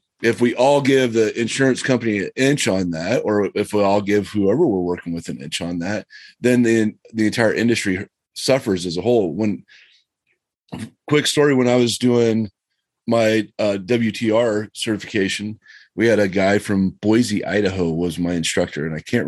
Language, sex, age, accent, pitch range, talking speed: English, male, 30-49, American, 95-115 Hz, 175 wpm